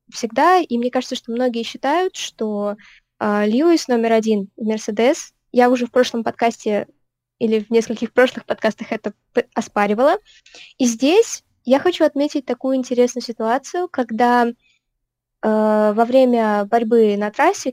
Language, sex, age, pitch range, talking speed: Russian, female, 20-39, 220-270 Hz, 130 wpm